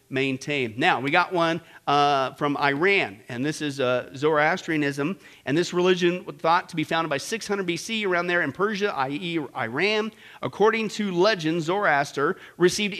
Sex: male